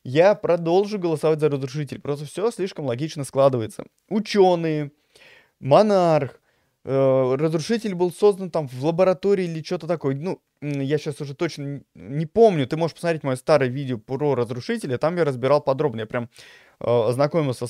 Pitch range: 135-175 Hz